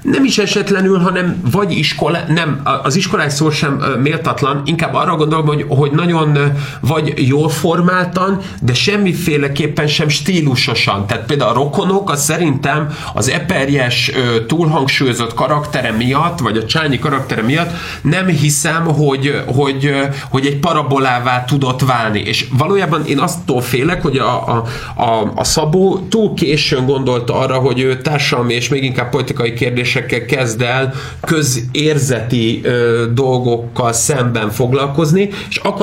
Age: 30-49